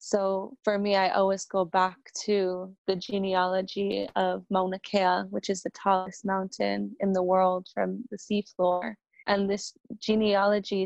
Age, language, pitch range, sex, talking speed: 20-39, English, 185-200 Hz, female, 150 wpm